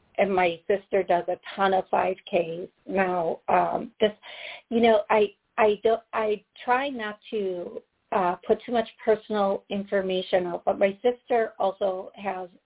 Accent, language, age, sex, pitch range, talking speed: American, English, 40-59, female, 185-220 Hz, 155 wpm